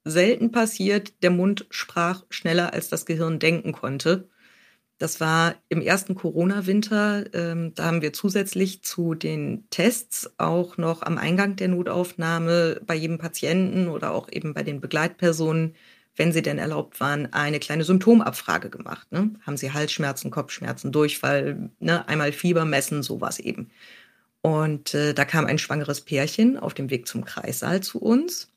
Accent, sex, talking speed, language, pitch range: German, female, 145 wpm, German, 160-210 Hz